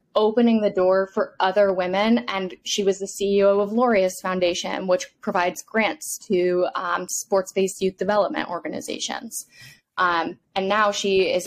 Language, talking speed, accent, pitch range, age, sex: English, 145 wpm, American, 185-205 Hz, 10-29, female